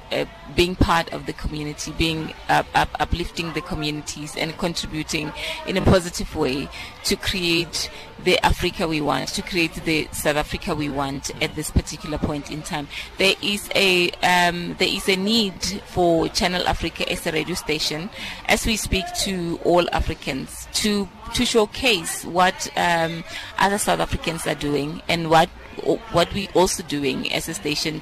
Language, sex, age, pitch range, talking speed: English, female, 30-49, 155-185 Hz, 165 wpm